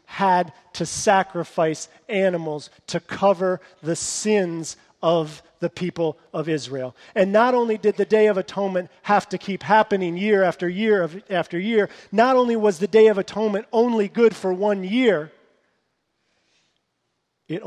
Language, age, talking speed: English, 40-59, 145 wpm